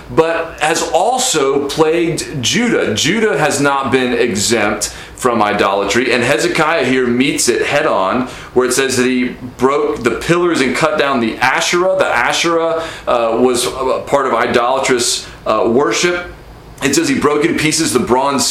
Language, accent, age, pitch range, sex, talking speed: English, American, 30-49, 125-160 Hz, male, 160 wpm